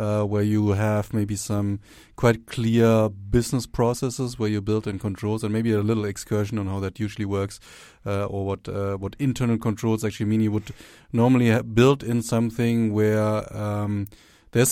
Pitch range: 105-115 Hz